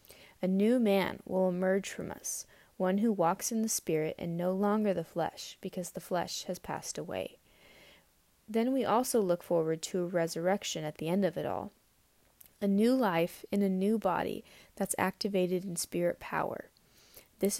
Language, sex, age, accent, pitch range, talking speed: English, female, 20-39, American, 180-220 Hz, 175 wpm